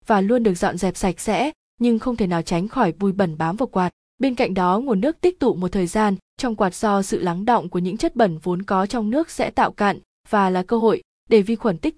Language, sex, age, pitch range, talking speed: Vietnamese, female, 20-39, 185-235 Hz, 265 wpm